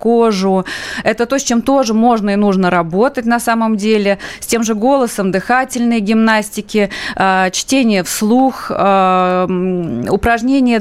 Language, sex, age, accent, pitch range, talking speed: Russian, female, 20-39, native, 185-230 Hz, 120 wpm